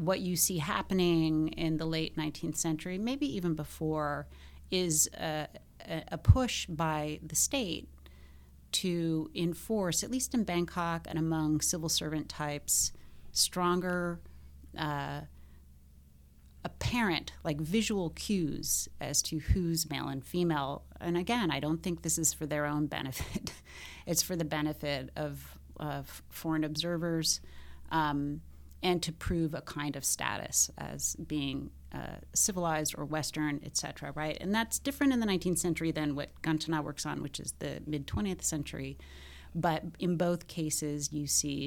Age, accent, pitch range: 30-49, American, 130-170 Hz